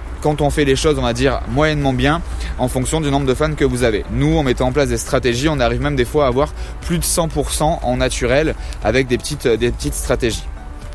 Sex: male